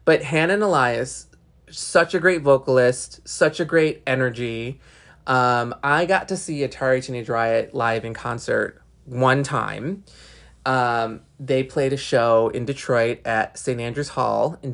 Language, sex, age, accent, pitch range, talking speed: English, male, 20-39, American, 115-155 Hz, 150 wpm